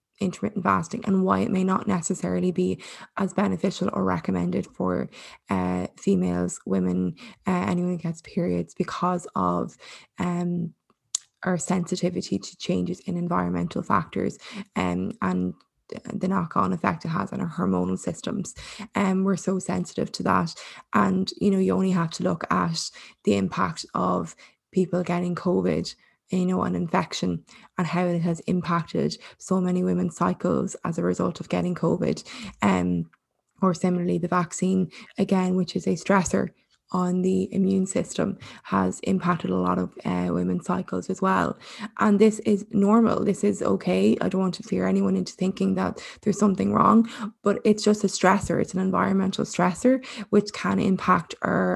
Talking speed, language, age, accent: 165 wpm, English, 20-39, Irish